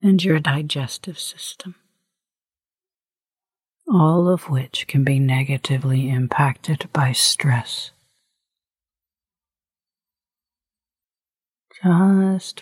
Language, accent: English, American